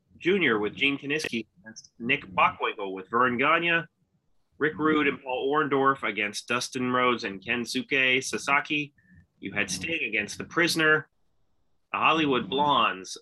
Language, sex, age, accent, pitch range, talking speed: English, male, 30-49, American, 105-140 Hz, 135 wpm